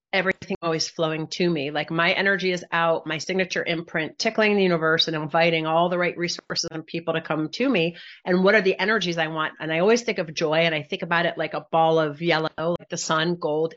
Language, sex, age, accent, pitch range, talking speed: English, female, 40-59, American, 160-180 Hz, 240 wpm